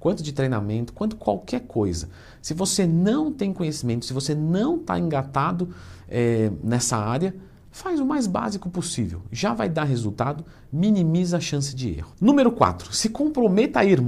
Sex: male